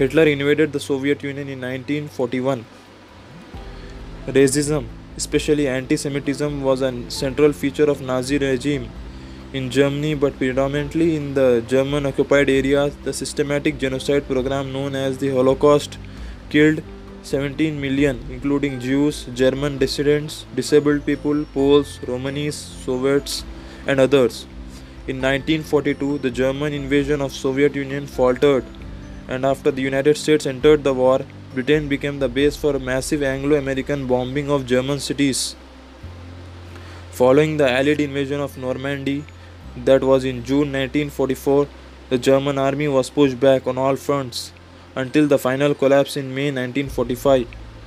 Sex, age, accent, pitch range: male, 20-39, Indian, 130-145 Hz